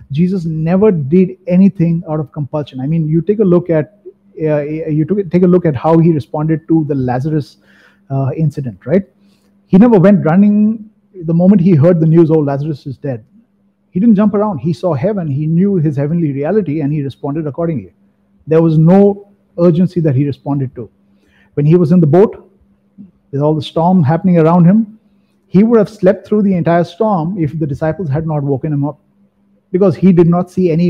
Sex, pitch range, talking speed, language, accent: male, 150-195 Hz, 200 wpm, English, Indian